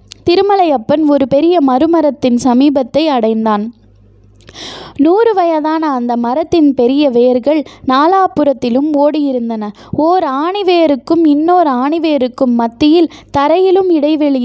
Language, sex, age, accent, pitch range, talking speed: Tamil, female, 20-39, native, 255-330 Hz, 85 wpm